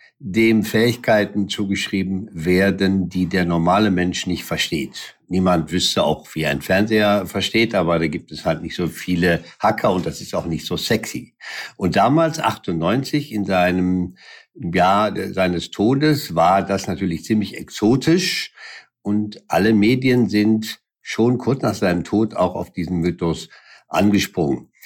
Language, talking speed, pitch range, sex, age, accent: German, 145 wpm, 90-110 Hz, male, 60-79, German